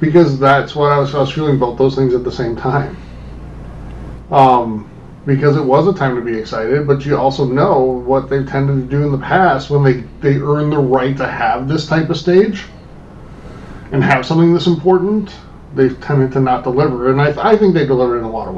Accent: American